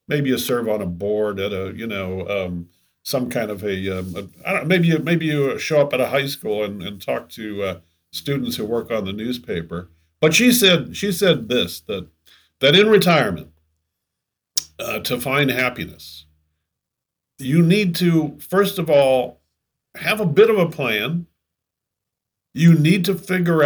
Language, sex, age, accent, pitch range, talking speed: English, male, 50-69, American, 110-145 Hz, 180 wpm